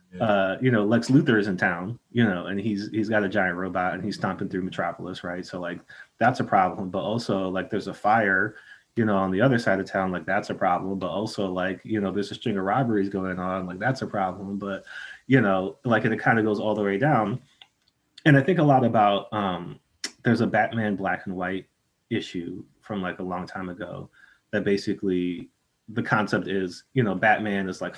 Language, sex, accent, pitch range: English, male, American, 95-105 Hz